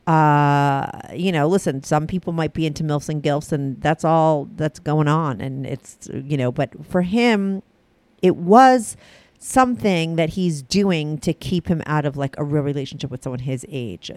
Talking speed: 185 wpm